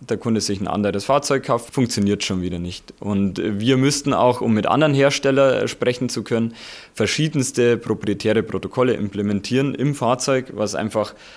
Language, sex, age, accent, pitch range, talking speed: German, male, 20-39, German, 105-130 Hz, 160 wpm